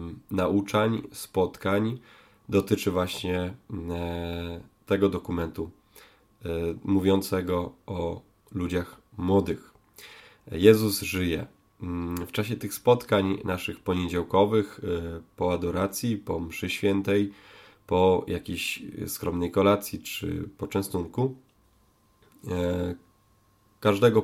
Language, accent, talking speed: Polish, native, 75 wpm